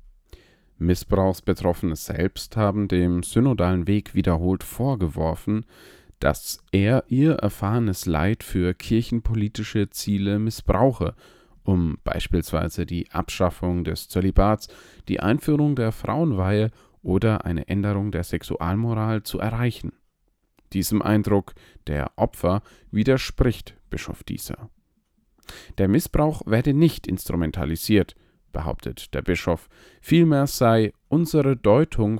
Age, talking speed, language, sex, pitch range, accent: 40-59, 100 wpm, German, male, 90-115 Hz, German